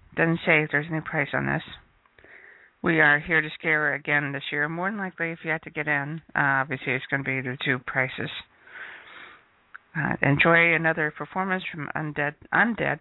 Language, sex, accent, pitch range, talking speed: English, female, American, 145-170 Hz, 195 wpm